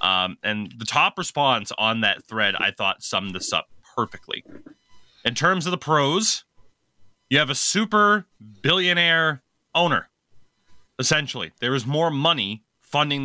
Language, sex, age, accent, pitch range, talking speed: English, male, 30-49, American, 110-155 Hz, 140 wpm